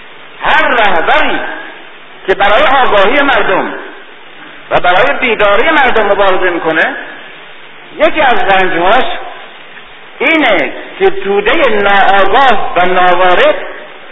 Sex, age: male, 50-69